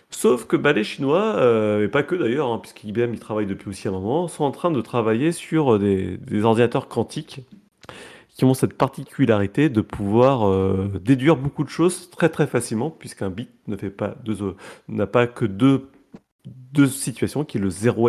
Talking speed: 195 wpm